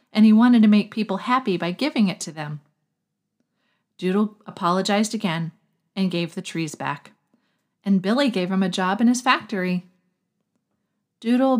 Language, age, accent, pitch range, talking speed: English, 40-59, American, 170-230 Hz, 155 wpm